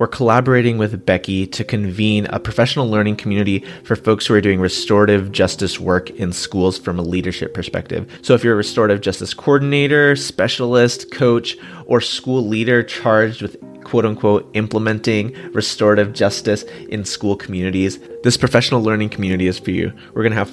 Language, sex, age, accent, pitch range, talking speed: English, male, 30-49, American, 100-120 Hz, 165 wpm